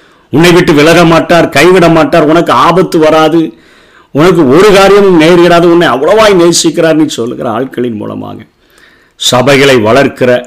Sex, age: male, 50-69